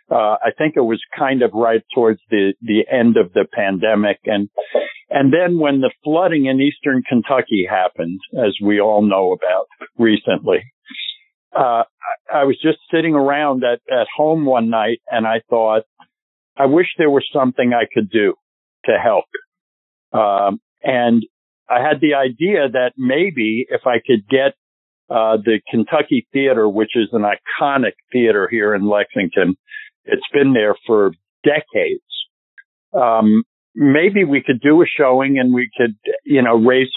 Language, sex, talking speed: English, male, 160 wpm